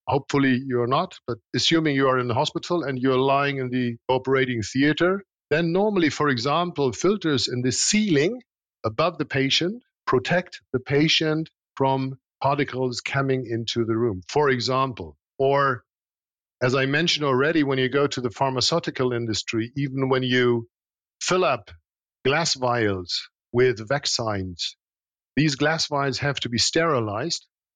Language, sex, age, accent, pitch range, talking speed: English, male, 50-69, German, 120-150 Hz, 145 wpm